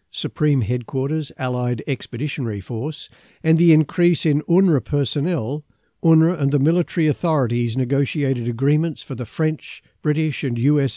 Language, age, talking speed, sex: English, 50-69, 130 wpm, male